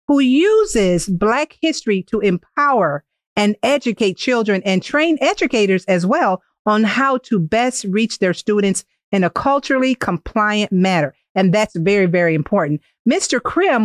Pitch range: 190-255 Hz